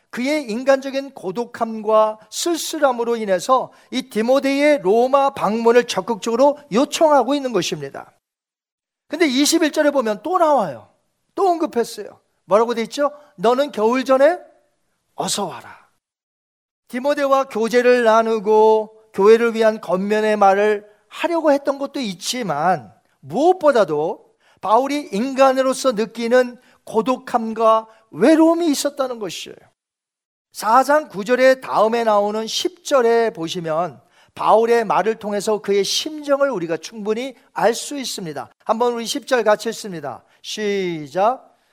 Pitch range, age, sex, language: 200-270 Hz, 40-59, male, Korean